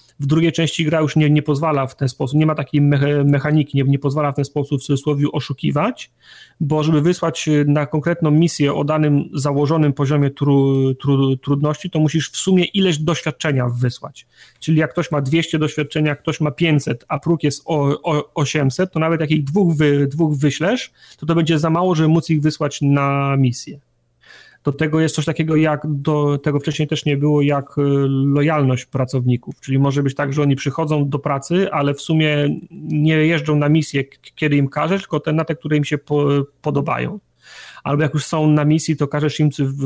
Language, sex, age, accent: Polish, male, 30-49, native